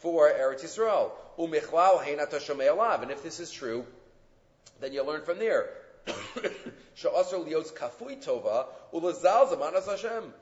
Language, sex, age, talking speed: English, male, 40-59, 120 wpm